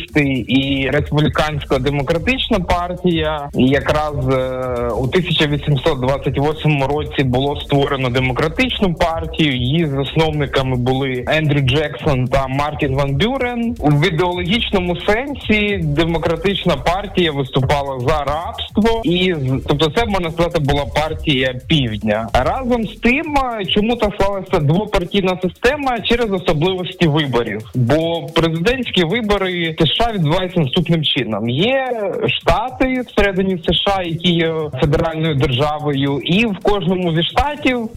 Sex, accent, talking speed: male, native, 105 wpm